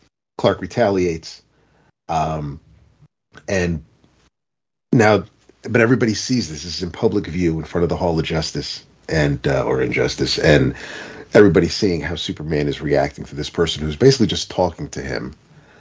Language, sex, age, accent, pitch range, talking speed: English, male, 40-59, American, 80-110 Hz, 155 wpm